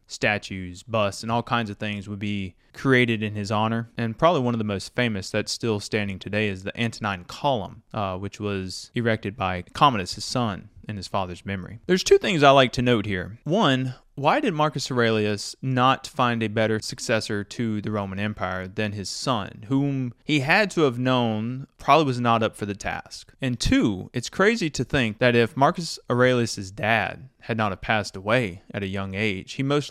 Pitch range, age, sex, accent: 105-130 Hz, 20-39, male, American